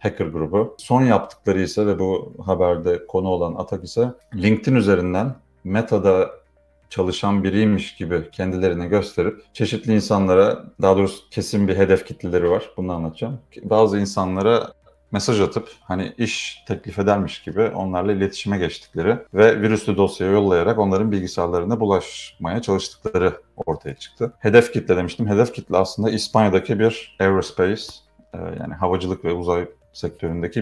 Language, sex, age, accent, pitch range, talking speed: Turkish, male, 30-49, native, 90-105 Hz, 130 wpm